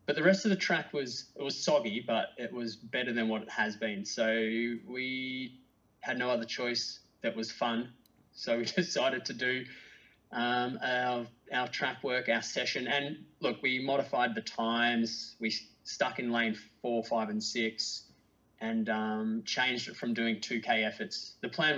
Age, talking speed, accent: 20-39, 175 wpm, Australian